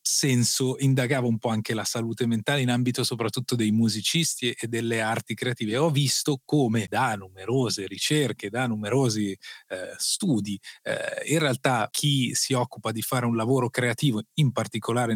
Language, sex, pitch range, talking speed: Italian, male, 115-135 Hz, 160 wpm